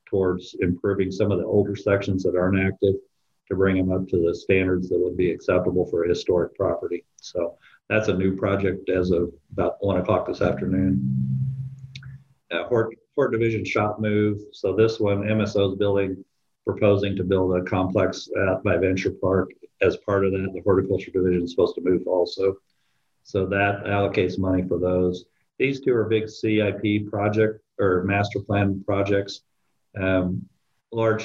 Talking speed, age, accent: 170 wpm, 50-69, American